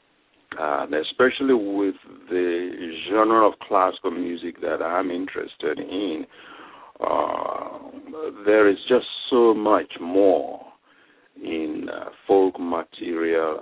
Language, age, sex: English, 60-79, male